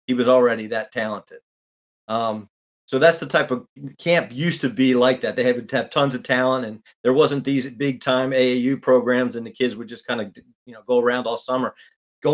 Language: English